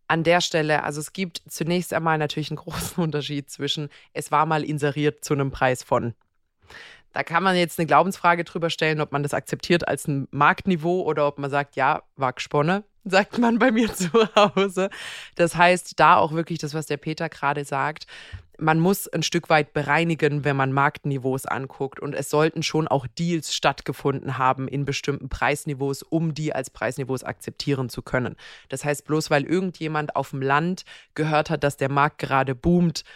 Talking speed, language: 185 wpm, German